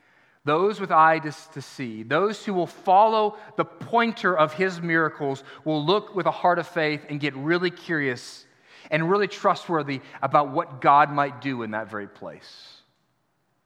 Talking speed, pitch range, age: 165 wpm, 145-195 Hz, 30-49